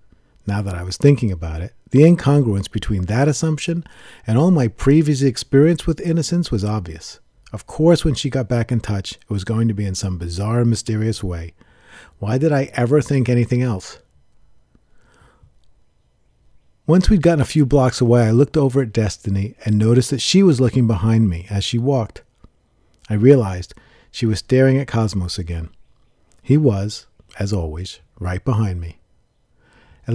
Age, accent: 40-59, American